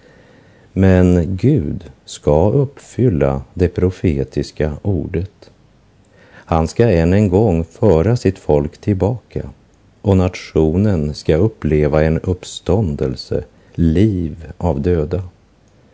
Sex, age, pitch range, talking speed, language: male, 50-69, 75-105 Hz, 95 wpm, Swedish